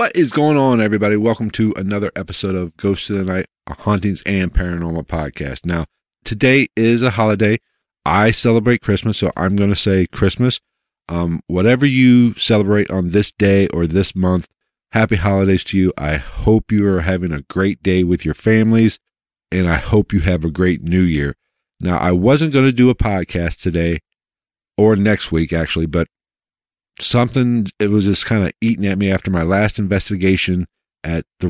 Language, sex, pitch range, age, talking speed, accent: English, male, 85-110 Hz, 50-69, 180 wpm, American